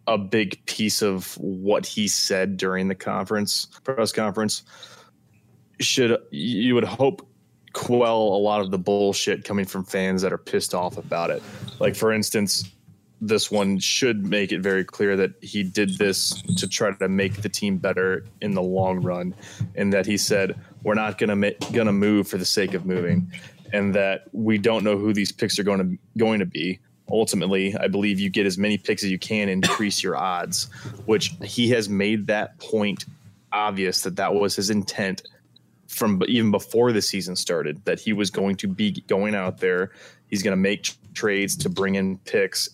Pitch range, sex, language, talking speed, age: 95-110 Hz, male, English, 195 wpm, 20-39